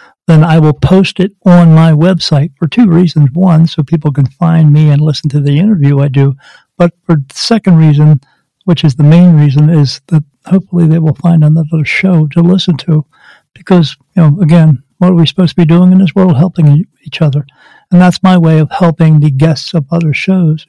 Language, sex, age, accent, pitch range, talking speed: English, male, 60-79, American, 155-185 Hz, 210 wpm